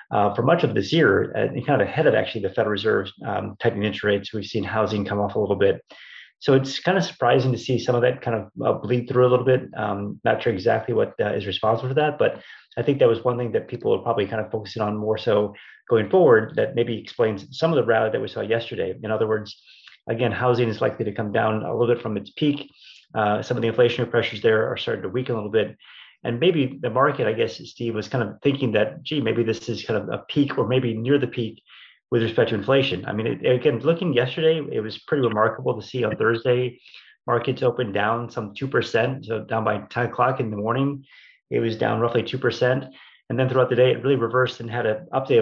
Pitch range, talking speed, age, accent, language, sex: 110-135 Hz, 250 wpm, 30-49, American, English, male